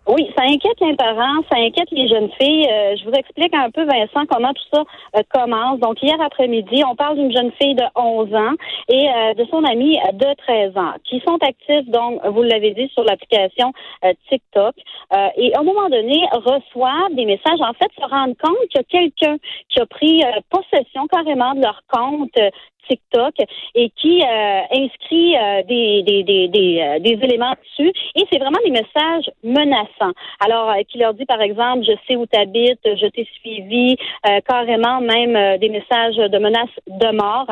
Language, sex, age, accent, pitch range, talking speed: French, female, 40-59, Canadian, 220-295 Hz, 195 wpm